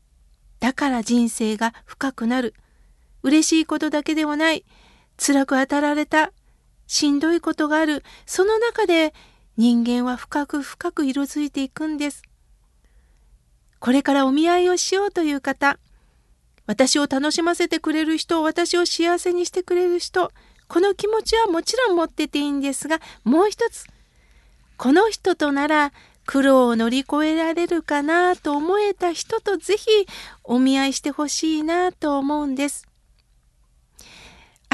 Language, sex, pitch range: Japanese, female, 250-335 Hz